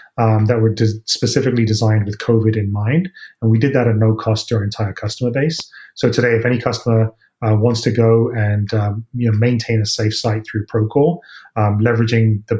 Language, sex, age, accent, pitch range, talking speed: English, male, 30-49, British, 110-130 Hz, 210 wpm